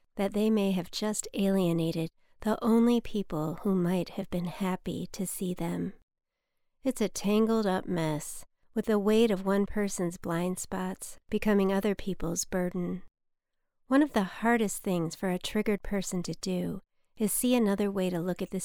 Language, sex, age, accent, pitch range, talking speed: English, female, 40-59, American, 180-220 Hz, 165 wpm